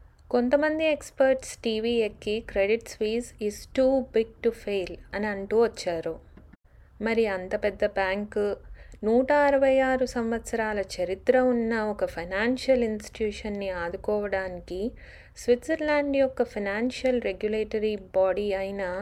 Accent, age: native, 30-49